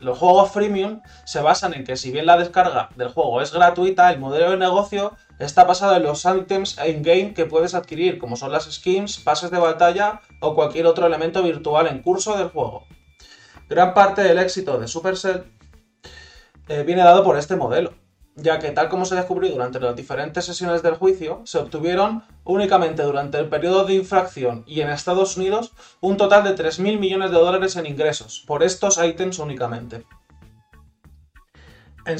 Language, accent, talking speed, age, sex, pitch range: Spanish, Spanish, 175 wpm, 20-39, male, 140-185 Hz